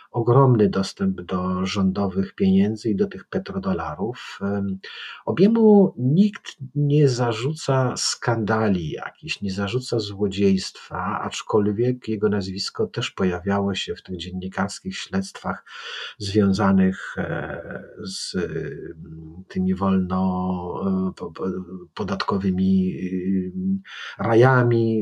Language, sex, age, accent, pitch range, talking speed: Polish, male, 50-69, native, 95-120 Hz, 80 wpm